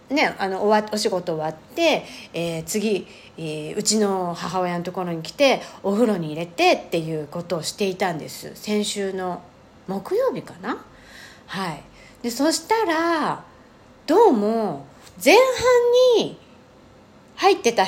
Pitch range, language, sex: 185-275 Hz, Japanese, female